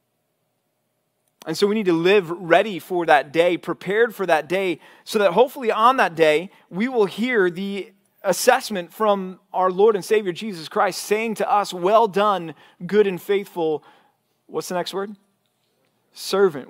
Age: 30-49